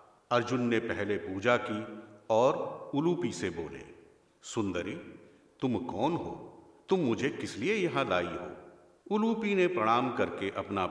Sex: male